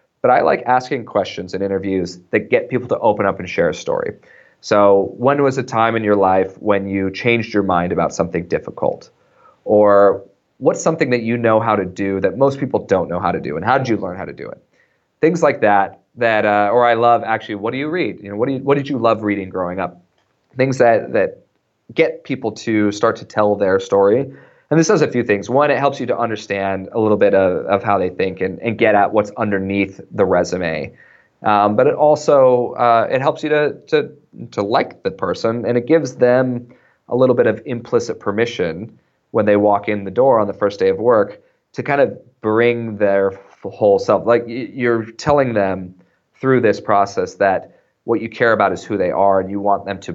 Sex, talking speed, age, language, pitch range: male, 225 wpm, 30-49, English, 100-130 Hz